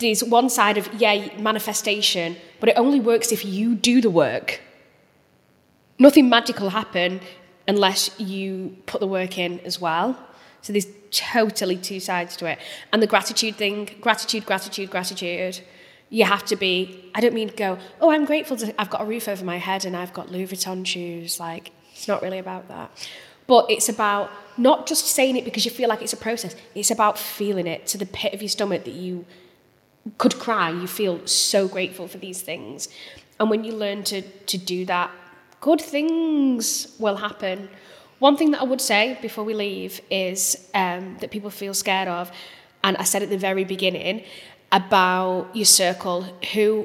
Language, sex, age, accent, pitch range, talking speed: English, female, 20-39, British, 185-220 Hz, 185 wpm